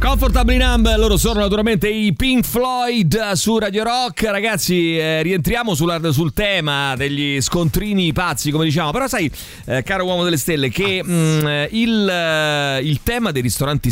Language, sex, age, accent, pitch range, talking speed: Italian, male, 30-49, native, 110-160 Hz, 160 wpm